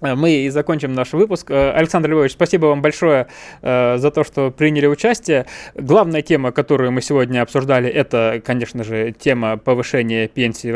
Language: Russian